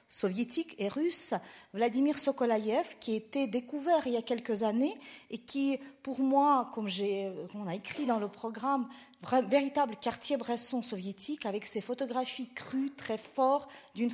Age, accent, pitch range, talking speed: 40-59, French, 225-270 Hz, 165 wpm